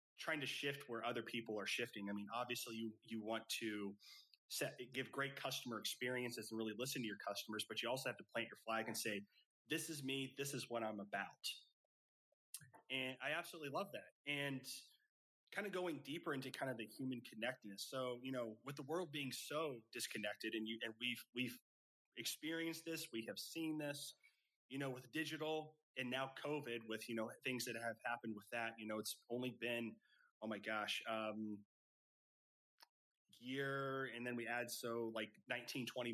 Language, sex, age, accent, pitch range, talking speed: English, male, 30-49, American, 115-140 Hz, 190 wpm